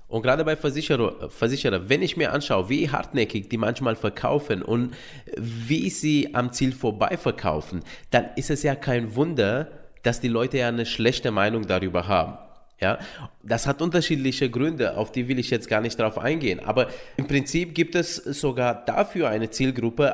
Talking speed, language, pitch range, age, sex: 175 wpm, German, 105-140 Hz, 20-39, male